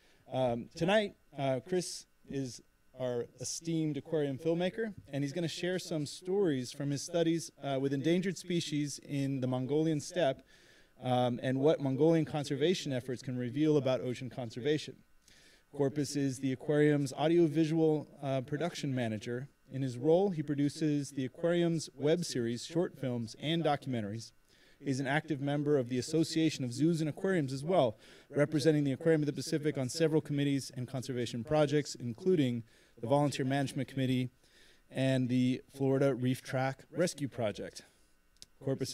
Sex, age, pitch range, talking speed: male, 30-49, 125-155 Hz, 150 wpm